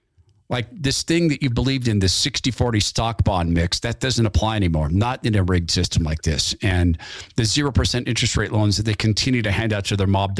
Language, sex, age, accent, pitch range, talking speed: English, male, 50-69, American, 100-125 Hz, 225 wpm